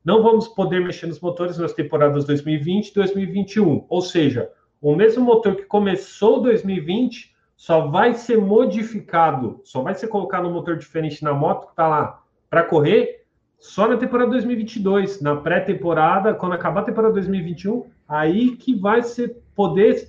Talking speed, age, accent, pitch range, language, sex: 160 wpm, 30-49, Brazilian, 155-220 Hz, Portuguese, male